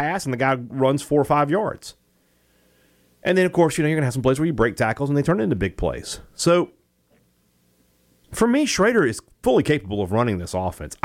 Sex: male